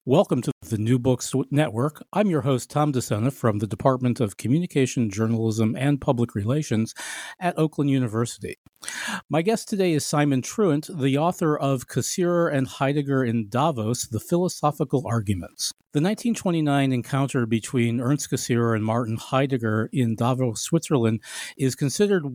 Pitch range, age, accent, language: 120-155 Hz, 50-69, American, English